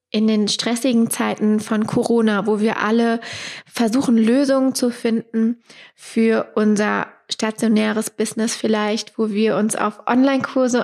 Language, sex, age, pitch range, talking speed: German, female, 20-39, 215-245 Hz, 125 wpm